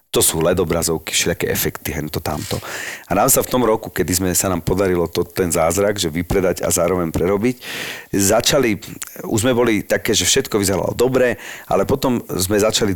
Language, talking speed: Slovak, 180 wpm